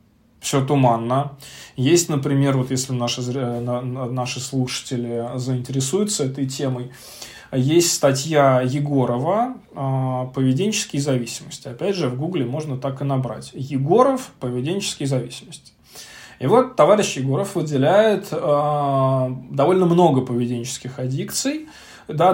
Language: Russian